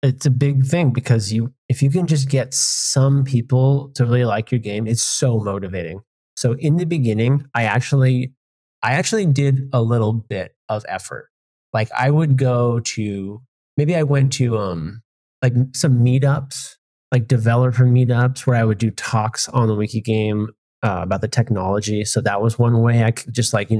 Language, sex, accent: English, male, American